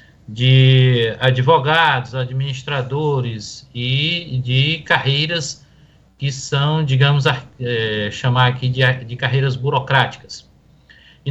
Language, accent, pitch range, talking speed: Portuguese, Brazilian, 125-140 Hz, 85 wpm